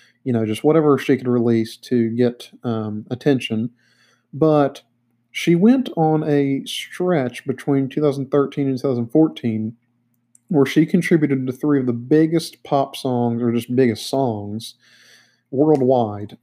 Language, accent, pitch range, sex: English, American, 120-145 Hz, male